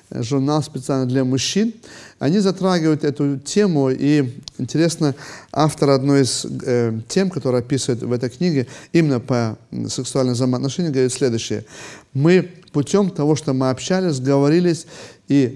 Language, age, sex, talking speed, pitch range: Russian, 30-49, male, 130 wpm, 125-150 Hz